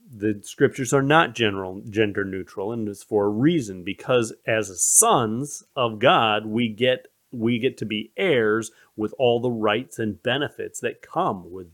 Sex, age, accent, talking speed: male, 40-59, American, 170 wpm